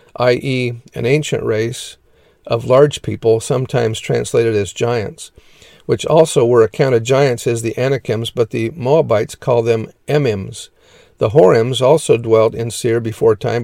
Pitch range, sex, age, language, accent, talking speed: 115-135 Hz, male, 50-69, English, American, 145 wpm